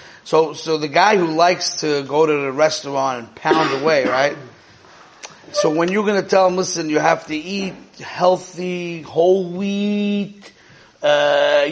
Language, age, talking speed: English, 30-49, 160 wpm